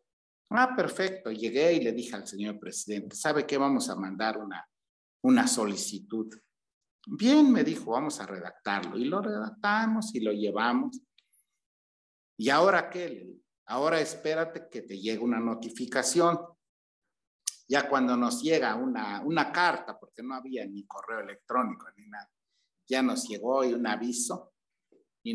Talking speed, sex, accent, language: 145 wpm, male, Mexican, Spanish